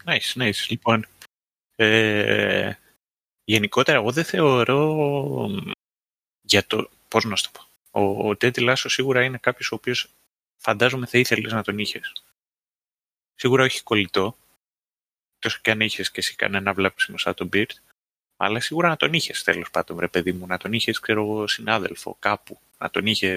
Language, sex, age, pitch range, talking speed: Greek, male, 30-49, 100-125 Hz, 155 wpm